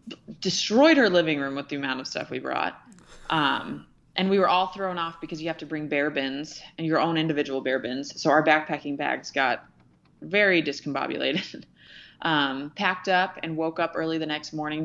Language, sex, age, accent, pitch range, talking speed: English, female, 20-39, American, 155-190 Hz, 195 wpm